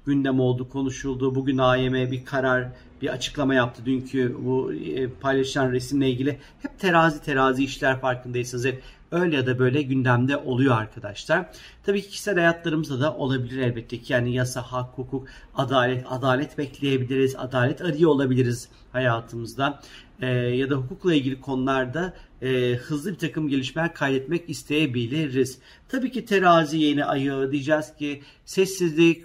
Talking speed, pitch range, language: 140 wpm, 130-155 Hz, Turkish